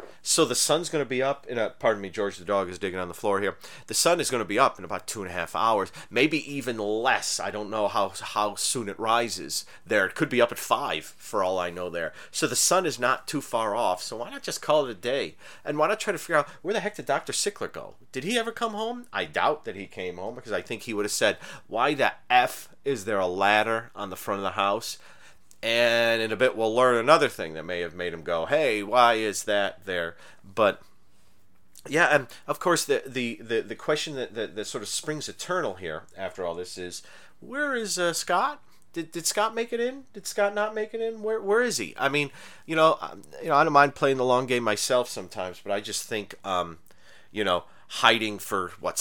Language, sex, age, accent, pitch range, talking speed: English, male, 30-49, American, 105-155 Hz, 250 wpm